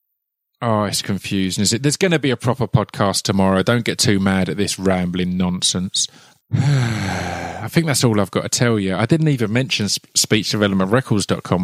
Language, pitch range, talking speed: English, 105-135 Hz, 180 wpm